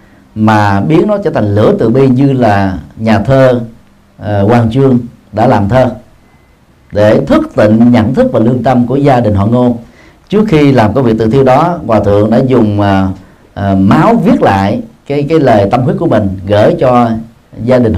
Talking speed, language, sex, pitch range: 195 wpm, Vietnamese, male, 105-140 Hz